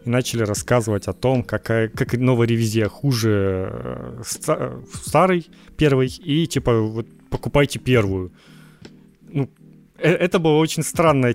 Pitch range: 110-145 Hz